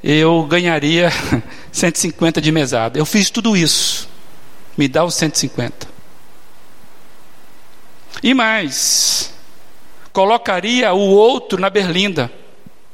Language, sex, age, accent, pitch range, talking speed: Portuguese, male, 50-69, Brazilian, 145-190 Hz, 95 wpm